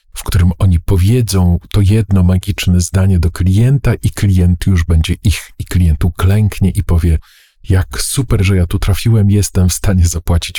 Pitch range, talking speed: 85-100 Hz, 170 wpm